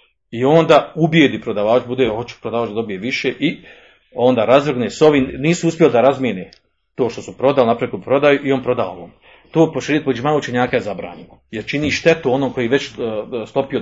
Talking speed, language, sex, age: 170 wpm, Croatian, male, 40-59